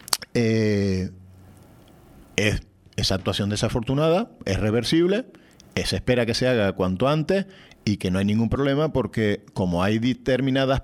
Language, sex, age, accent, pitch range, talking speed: Spanish, male, 40-59, Spanish, 105-155 Hz, 135 wpm